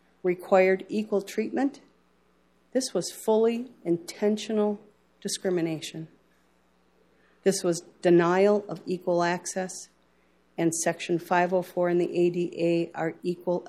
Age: 40-59